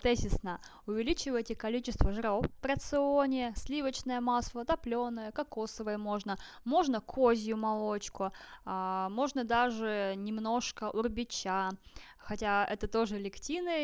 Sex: female